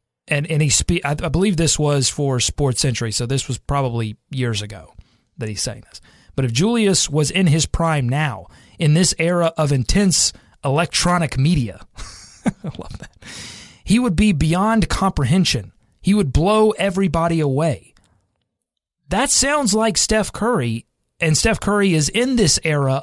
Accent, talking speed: American, 155 wpm